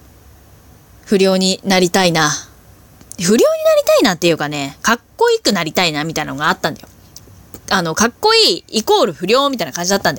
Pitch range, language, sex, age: 170-255 Hz, Japanese, female, 20-39